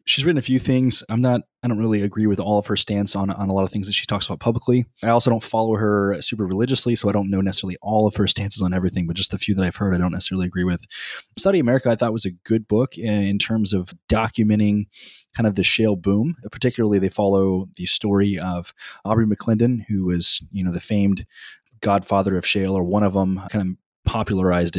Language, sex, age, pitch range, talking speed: English, male, 20-39, 95-110 Hz, 235 wpm